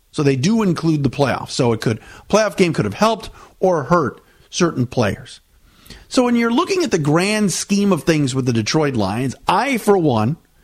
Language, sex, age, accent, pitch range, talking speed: English, male, 50-69, American, 130-185 Hz, 195 wpm